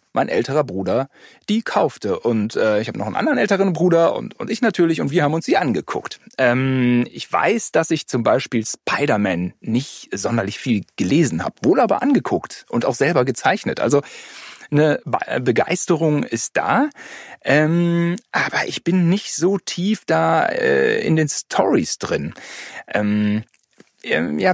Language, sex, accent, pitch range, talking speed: German, male, German, 120-185 Hz, 155 wpm